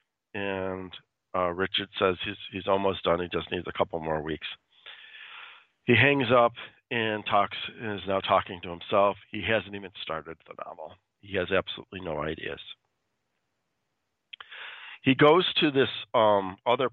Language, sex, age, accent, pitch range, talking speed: English, male, 40-59, American, 90-110 Hz, 150 wpm